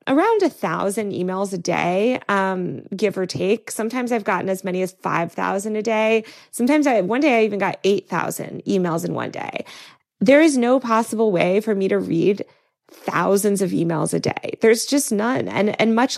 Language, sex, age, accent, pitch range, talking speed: English, female, 20-39, American, 185-240 Hz, 195 wpm